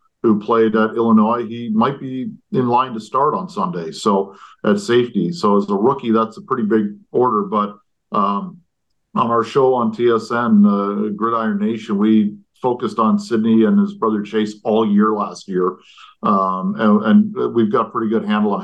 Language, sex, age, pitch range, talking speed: English, male, 50-69, 105-145 Hz, 185 wpm